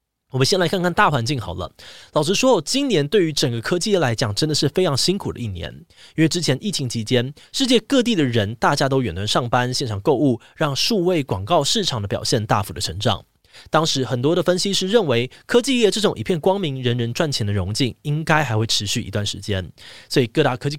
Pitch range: 115-165 Hz